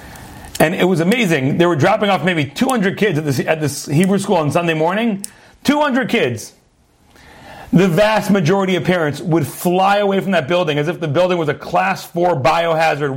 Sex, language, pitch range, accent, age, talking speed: male, English, 175-230 Hz, American, 40-59, 190 wpm